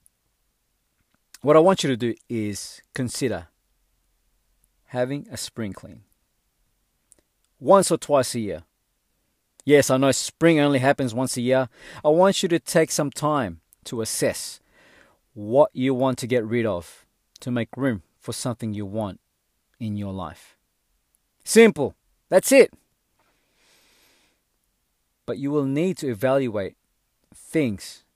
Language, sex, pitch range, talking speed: English, male, 110-165 Hz, 130 wpm